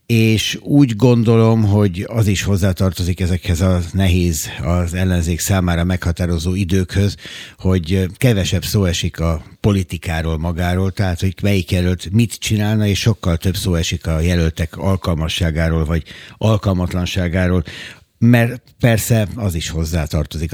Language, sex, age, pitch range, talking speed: Hungarian, male, 60-79, 90-105 Hz, 125 wpm